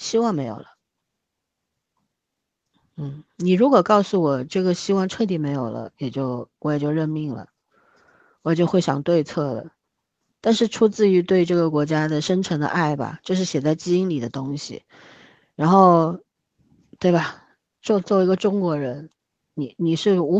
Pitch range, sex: 145-185 Hz, female